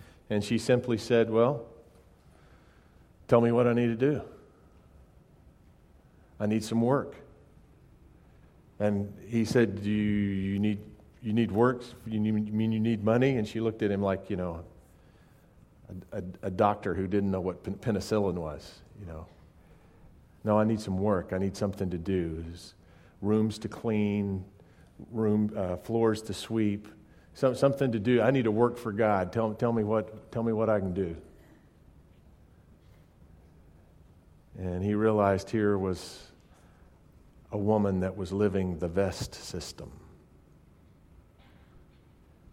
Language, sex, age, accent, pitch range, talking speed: English, male, 40-59, American, 85-110 Hz, 145 wpm